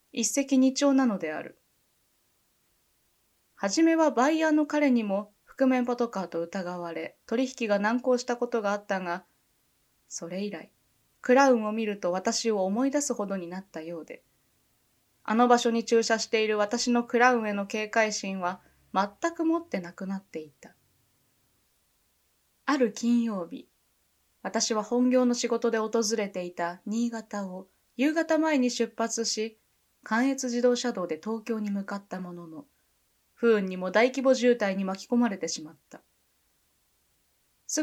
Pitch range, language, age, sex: 175-250 Hz, Japanese, 20-39, female